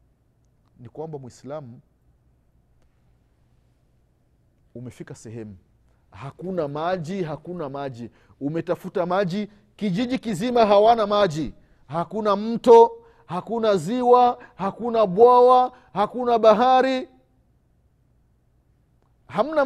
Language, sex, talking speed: Swahili, male, 70 wpm